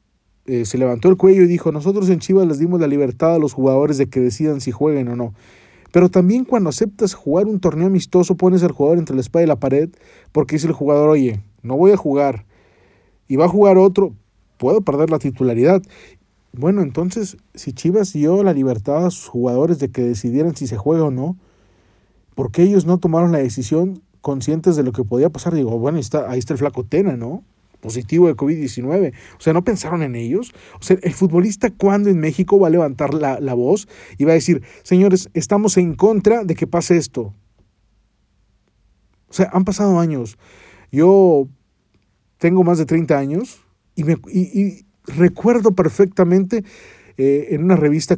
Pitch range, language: 130-180 Hz, Spanish